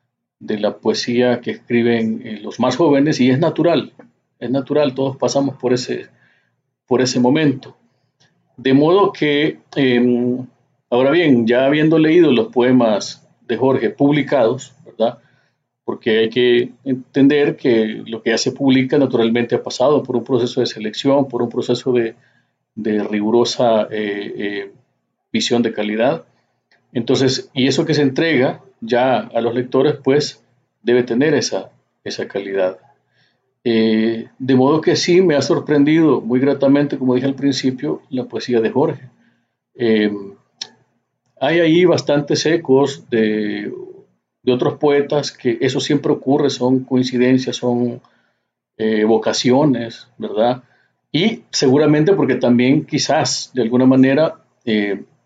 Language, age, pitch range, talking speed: Spanish, 40-59, 120-140 Hz, 135 wpm